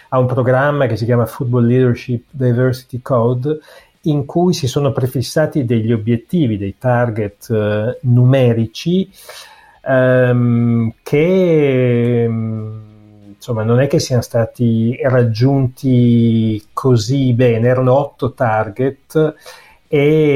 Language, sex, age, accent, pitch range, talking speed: Italian, male, 30-49, native, 115-135 Hz, 110 wpm